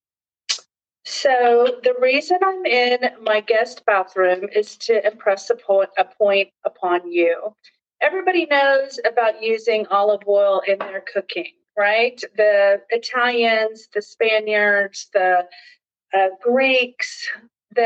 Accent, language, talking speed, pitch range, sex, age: American, English, 110 wpm, 185-235 Hz, female, 40-59